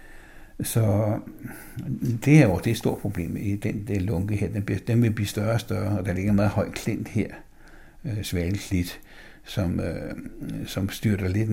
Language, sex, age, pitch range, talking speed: Danish, male, 60-79, 105-125 Hz, 185 wpm